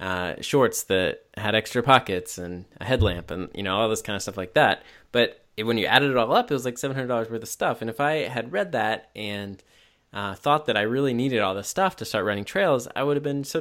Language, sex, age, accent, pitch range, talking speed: English, male, 20-39, American, 95-120 Hz, 255 wpm